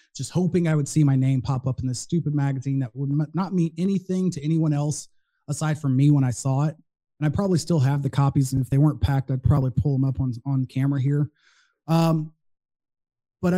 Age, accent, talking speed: 30-49, American, 225 wpm